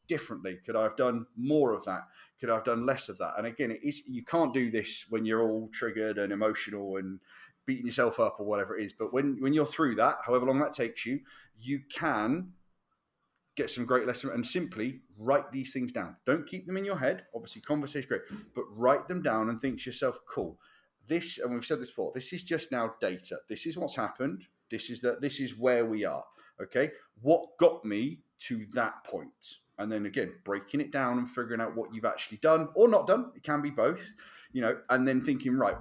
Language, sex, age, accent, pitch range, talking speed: English, male, 30-49, British, 115-150 Hz, 225 wpm